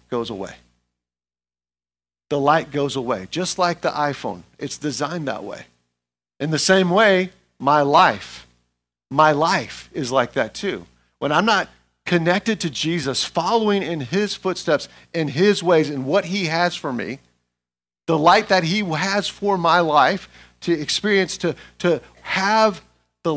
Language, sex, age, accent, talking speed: English, male, 50-69, American, 150 wpm